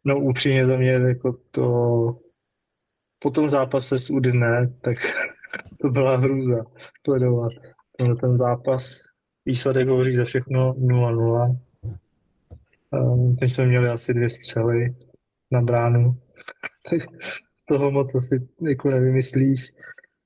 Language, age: Slovak, 20-39